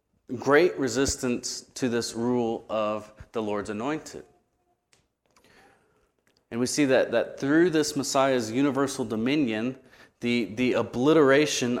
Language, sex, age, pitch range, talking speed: English, male, 30-49, 110-130 Hz, 110 wpm